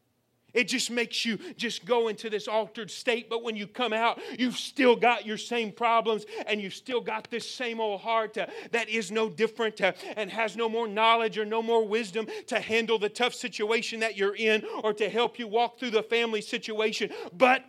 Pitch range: 205-235 Hz